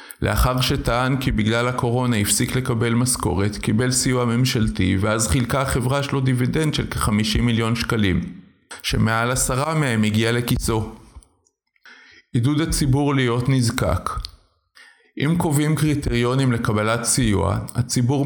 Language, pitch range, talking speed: Hebrew, 110-130 Hz, 115 wpm